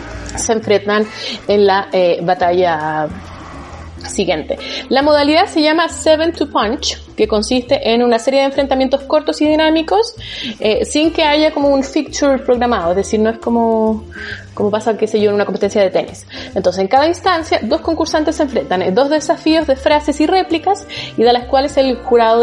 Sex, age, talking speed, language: female, 20-39, 180 wpm, Spanish